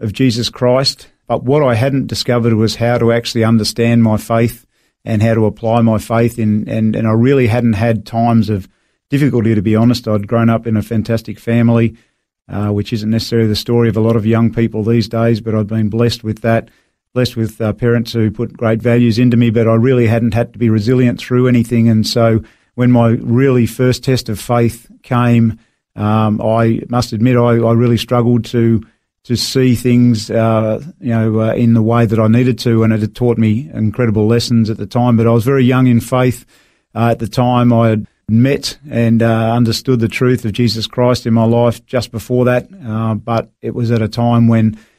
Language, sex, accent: English, male, Australian